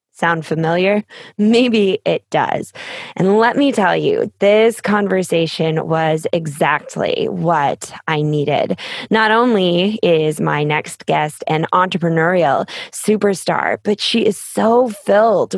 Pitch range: 170-220 Hz